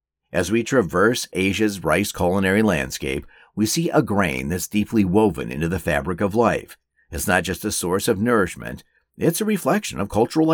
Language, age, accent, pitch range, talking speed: English, 50-69, American, 85-120 Hz, 175 wpm